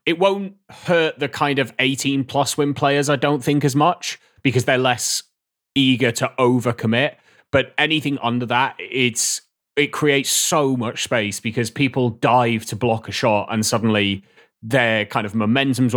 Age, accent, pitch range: 30-49, British, 110-140 Hz